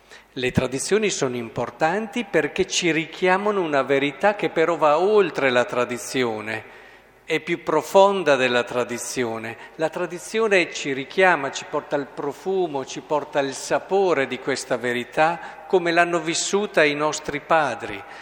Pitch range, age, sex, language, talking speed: 140-190 Hz, 50-69, male, Italian, 135 wpm